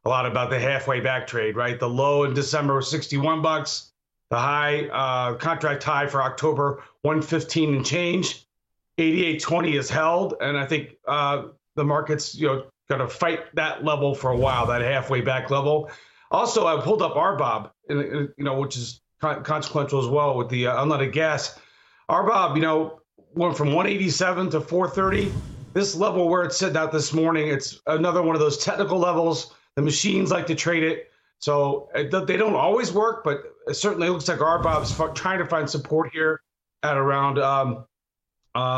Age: 40-59